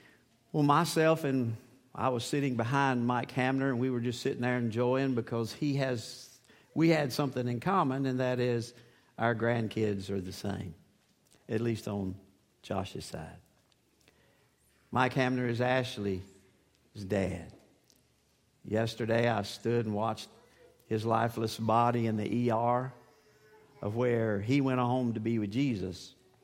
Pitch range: 105-130 Hz